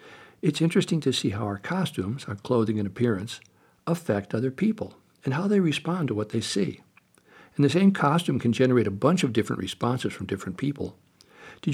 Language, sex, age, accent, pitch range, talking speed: English, male, 60-79, American, 105-145 Hz, 190 wpm